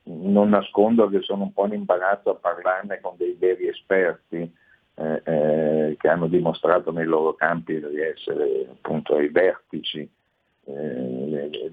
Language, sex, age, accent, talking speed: Italian, male, 50-69, native, 145 wpm